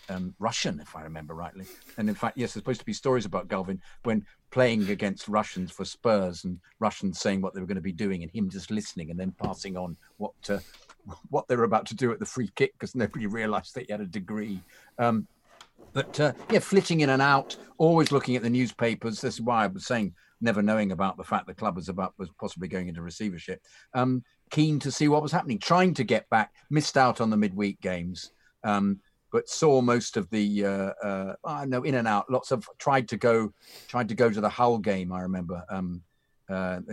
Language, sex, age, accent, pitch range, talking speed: English, male, 50-69, British, 95-150 Hz, 230 wpm